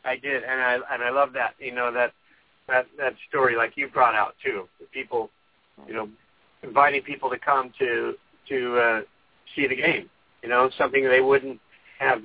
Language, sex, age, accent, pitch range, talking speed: English, male, 50-69, American, 130-175 Hz, 190 wpm